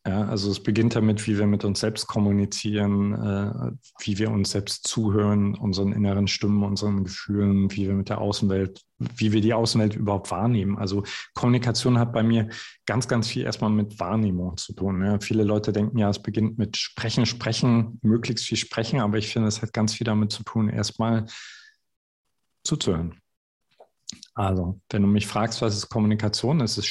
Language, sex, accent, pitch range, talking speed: German, male, German, 105-115 Hz, 175 wpm